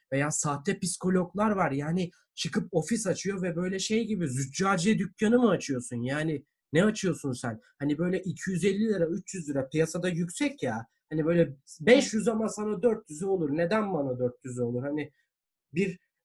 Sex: male